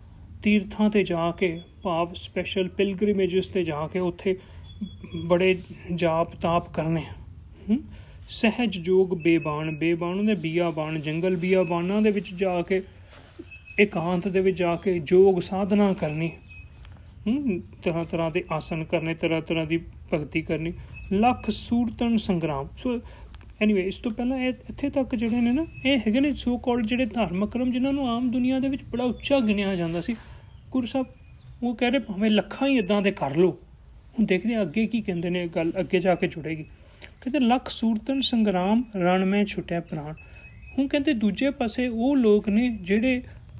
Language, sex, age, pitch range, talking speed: Punjabi, male, 30-49, 170-230 Hz, 135 wpm